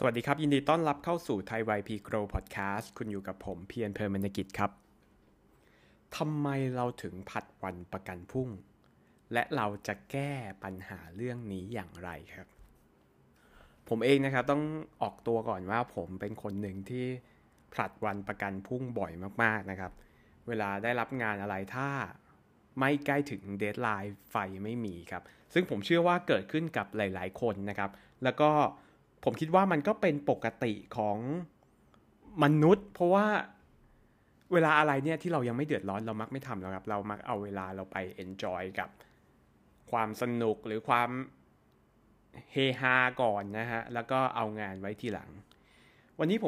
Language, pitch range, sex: Thai, 100-135 Hz, male